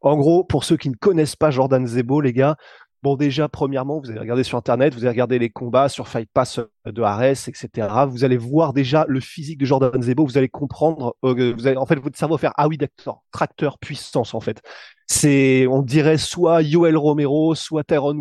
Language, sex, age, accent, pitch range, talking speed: French, male, 20-39, French, 130-165 Hz, 220 wpm